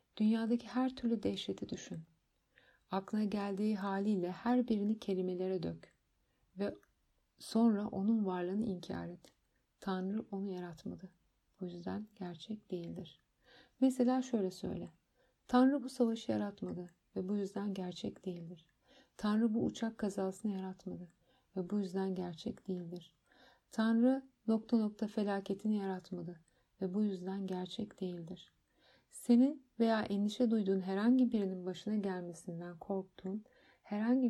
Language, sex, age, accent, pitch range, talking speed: Turkish, female, 60-79, native, 185-230 Hz, 115 wpm